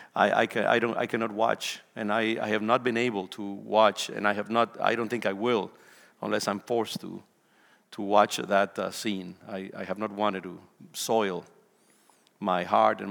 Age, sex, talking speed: 50-69, male, 205 wpm